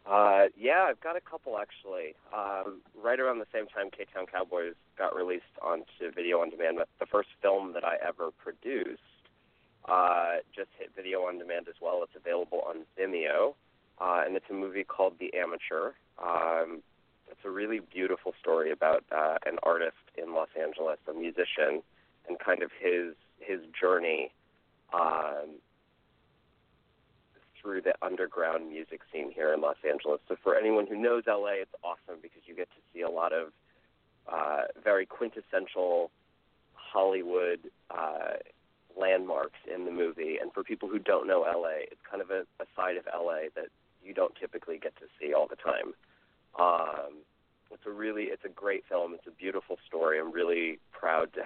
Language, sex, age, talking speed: English, male, 30-49, 170 wpm